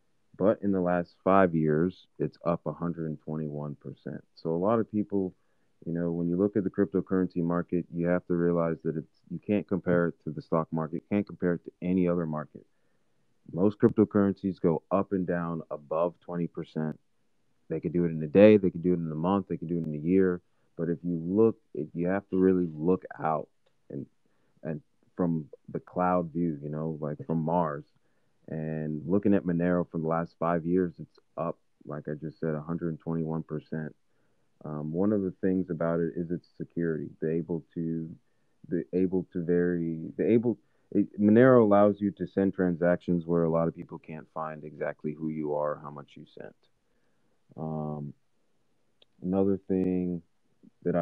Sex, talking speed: male, 185 wpm